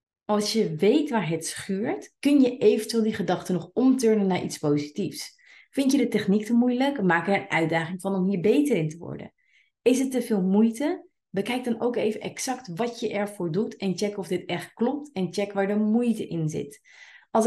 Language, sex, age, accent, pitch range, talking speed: Dutch, female, 30-49, Dutch, 170-225 Hz, 210 wpm